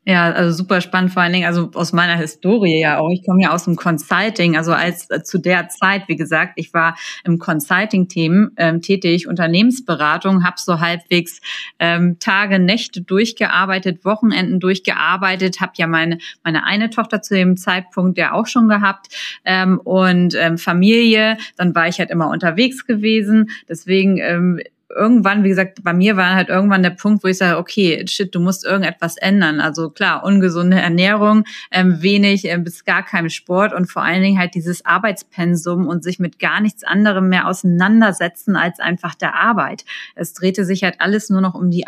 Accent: German